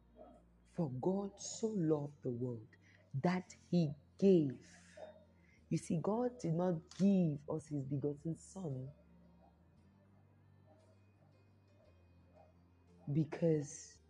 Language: English